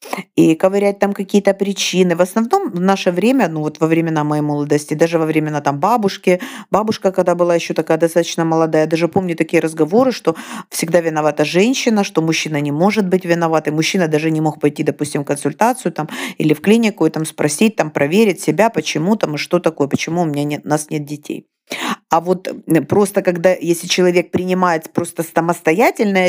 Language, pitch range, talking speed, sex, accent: Russian, 150-185 Hz, 190 wpm, female, native